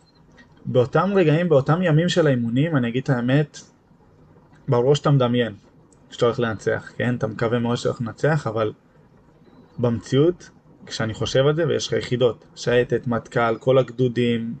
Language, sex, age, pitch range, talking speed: Hebrew, male, 20-39, 120-150 Hz, 145 wpm